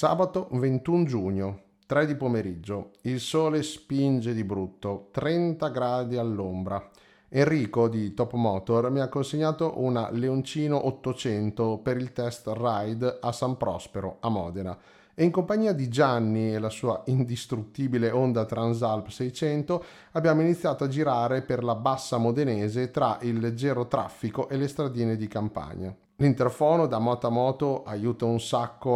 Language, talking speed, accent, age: Italian, 145 wpm, native, 30-49